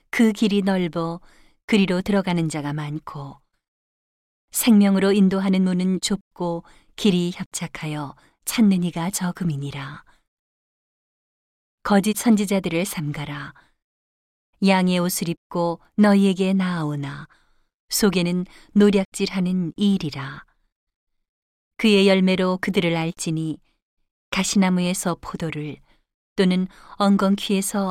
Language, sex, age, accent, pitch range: Korean, female, 40-59, native, 165-195 Hz